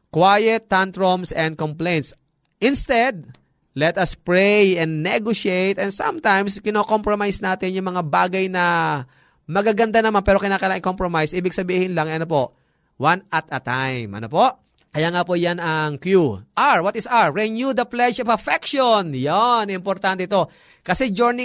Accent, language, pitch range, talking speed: native, Filipino, 160-220 Hz, 150 wpm